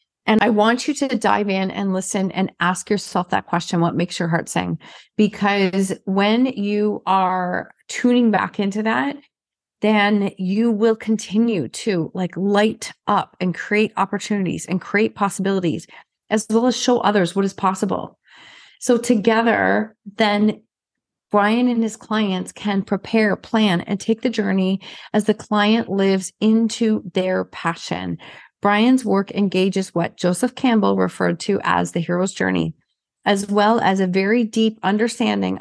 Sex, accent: female, American